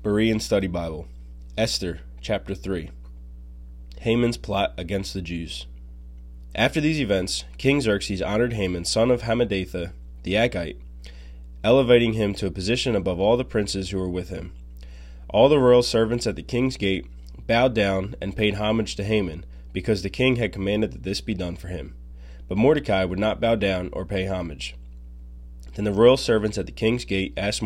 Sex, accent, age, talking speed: male, American, 20-39, 175 wpm